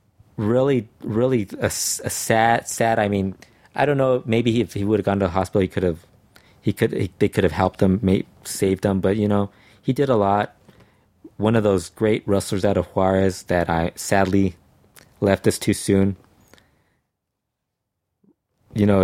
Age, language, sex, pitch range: 20-39, English, male, 95-110 Hz